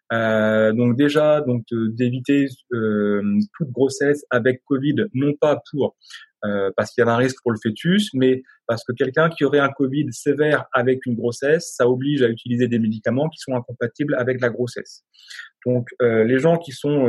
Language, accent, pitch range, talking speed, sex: French, French, 115-145 Hz, 190 wpm, male